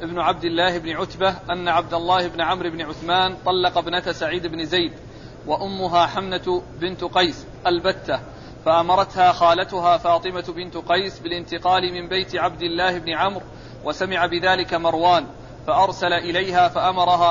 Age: 40-59